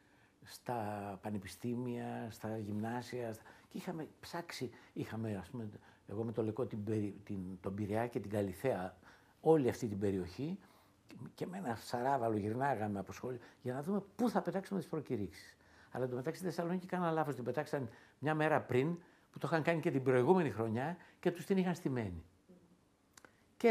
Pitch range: 105-175 Hz